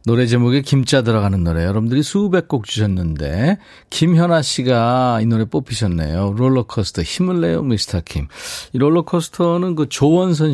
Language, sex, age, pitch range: Korean, male, 40-59, 100-145 Hz